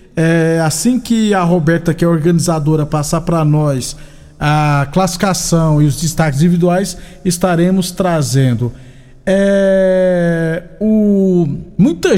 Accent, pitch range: Brazilian, 165-210 Hz